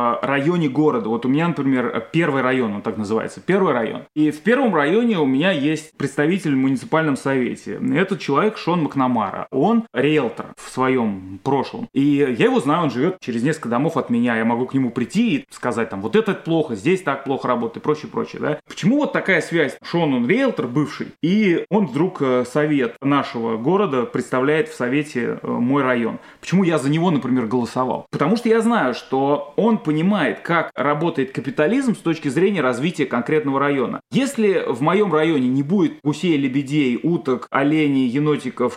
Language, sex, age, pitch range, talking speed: Russian, male, 20-39, 140-190 Hz, 175 wpm